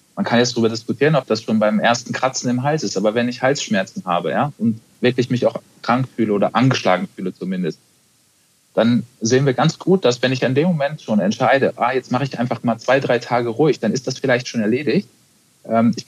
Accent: German